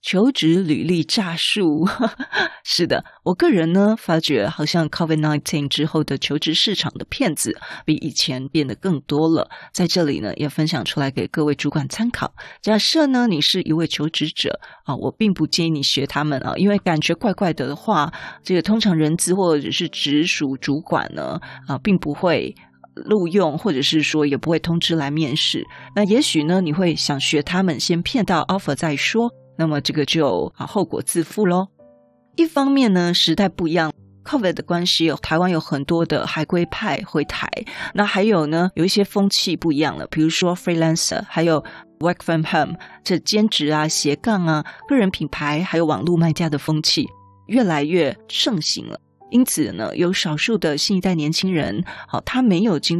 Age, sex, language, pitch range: 30-49, female, Chinese, 150-190 Hz